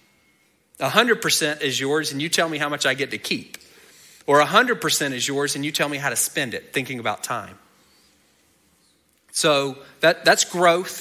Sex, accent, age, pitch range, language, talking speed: male, American, 30-49, 120-150 Hz, English, 175 wpm